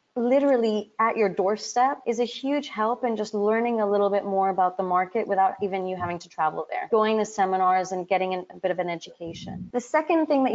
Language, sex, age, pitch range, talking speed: English, female, 30-49, 190-230 Hz, 230 wpm